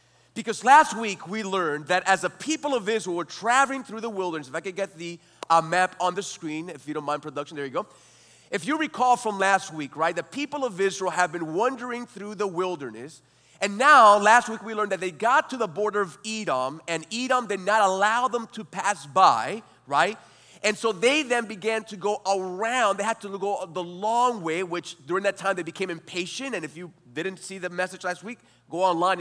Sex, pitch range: male, 160-220 Hz